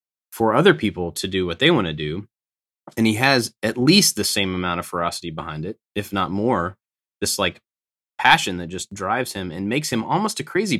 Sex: male